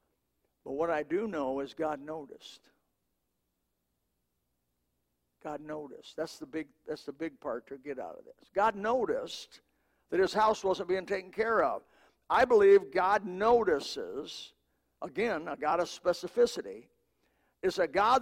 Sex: male